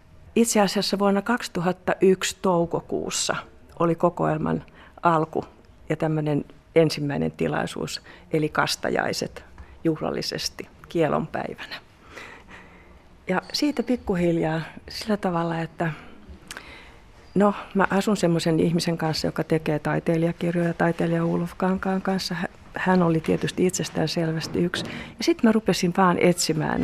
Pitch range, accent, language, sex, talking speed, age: 160-190 Hz, native, Finnish, female, 100 wpm, 40-59